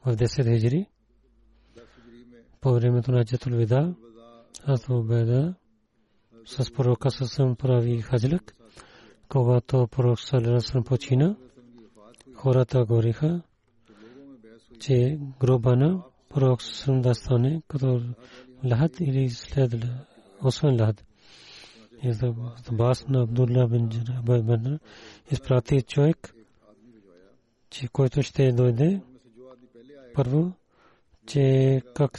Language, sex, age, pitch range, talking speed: Bulgarian, male, 40-59, 115-135 Hz, 75 wpm